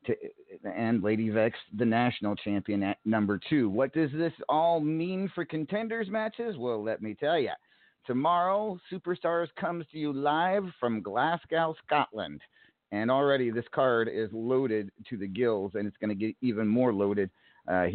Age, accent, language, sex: 40-59, American, English, male